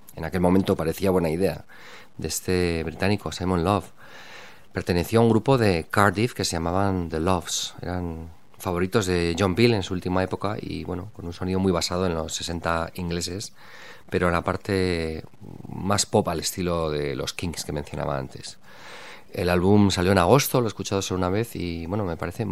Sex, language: male, Spanish